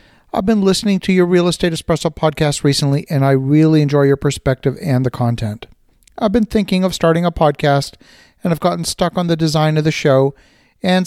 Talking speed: 200 wpm